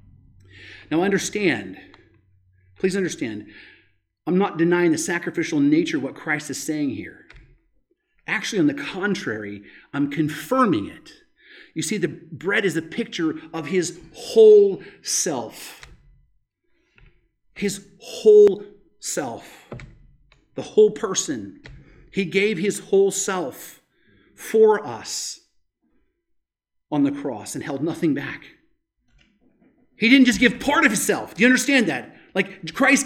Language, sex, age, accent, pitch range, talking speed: English, male, 40-59, American, 170-270 Hz, 120 wpm